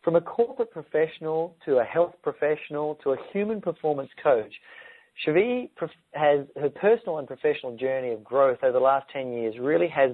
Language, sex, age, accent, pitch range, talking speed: English, male, 40-59, Australian, 135-185 Hz, 170 wpm